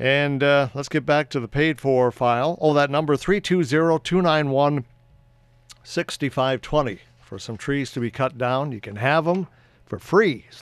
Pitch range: 120-160 Hz